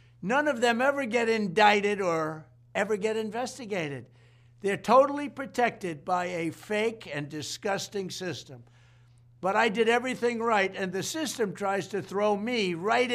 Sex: male